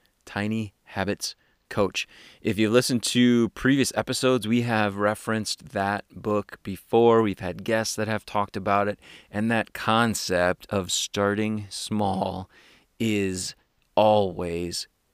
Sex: male